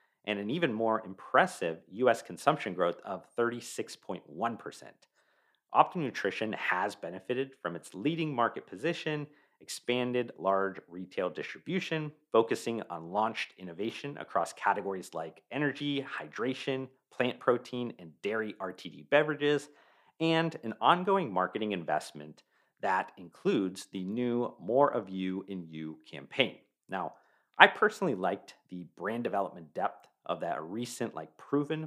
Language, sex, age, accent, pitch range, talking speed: English, male, 40-59, American, 95-145 Hz, 120 wpm